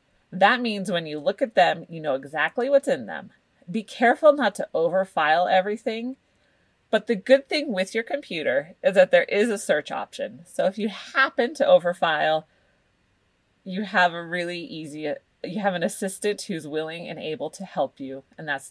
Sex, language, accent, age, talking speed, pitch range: female, English, American, 30-49, 185 wpm, 165-235 Hz